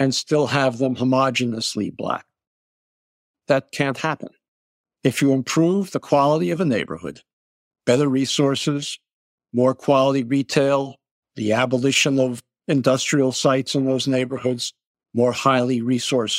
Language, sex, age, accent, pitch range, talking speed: English, male, 60-79, American, 125-150 Hz, 120 wpm